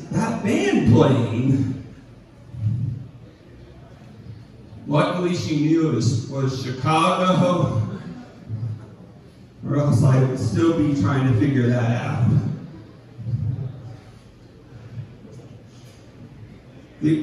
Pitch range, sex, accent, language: 125-160 Hz, male, American, English